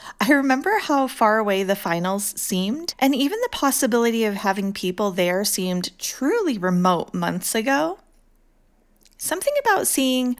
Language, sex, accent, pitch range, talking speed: English, female, American, 190-270 Hz, 140 wpm